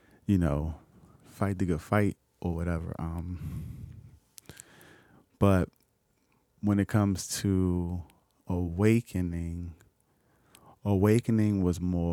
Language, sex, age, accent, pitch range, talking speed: English, male, 20-39, American, 85-95 Hz, 90 wpm